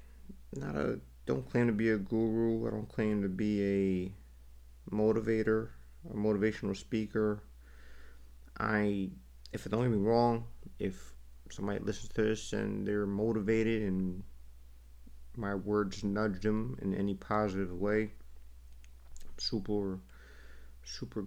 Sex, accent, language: male, American, English